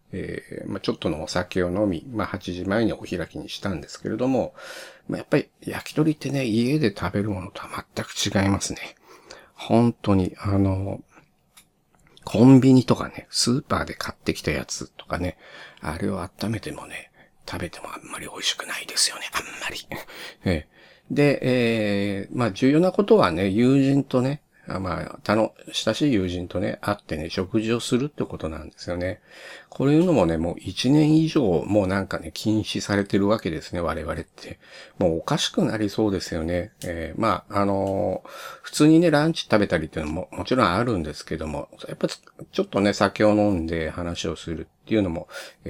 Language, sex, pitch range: Japanese, male, 90-120 Hz